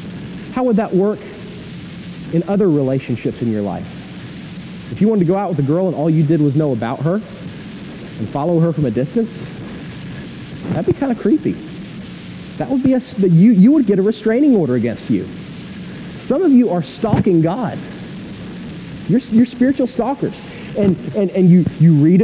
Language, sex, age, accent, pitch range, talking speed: English, male, 40-59, American, 165-205 Hz, 180 wpm